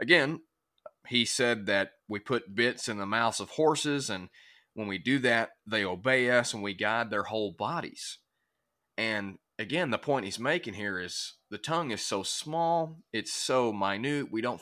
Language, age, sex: English, 30-49, male